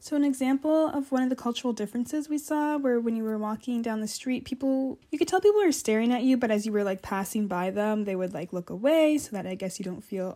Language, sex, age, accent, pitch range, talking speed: English, female, 10-29, American, 205-265 Hz, 280 wpm